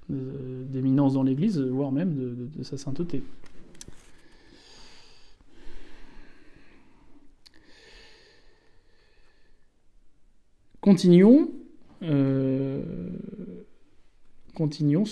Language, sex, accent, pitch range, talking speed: French, male, French, 145-205 Hz, 50 wpm